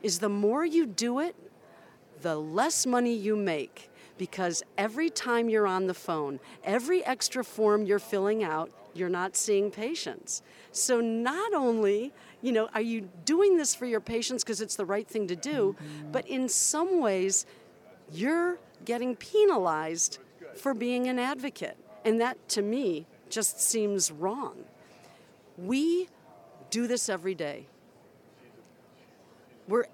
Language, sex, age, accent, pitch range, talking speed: English, female, 50-69, American, 190-250 Hz, 140 wpm